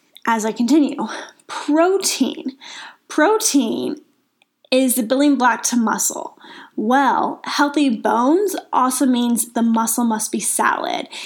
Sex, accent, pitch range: female, American, 230-295 Hz